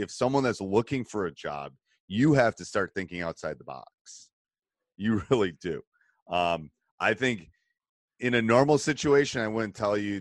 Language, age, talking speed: English, 30-49, 170 wpm